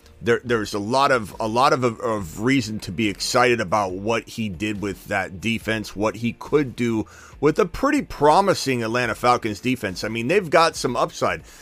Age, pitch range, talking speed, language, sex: 30-49, 115-175 Hz, 190 wpm, English, male